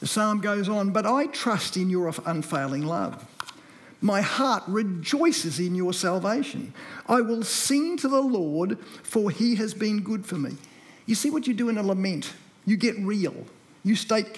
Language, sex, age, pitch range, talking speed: English, male, 50-69, 175-230 Hz, 180 wpm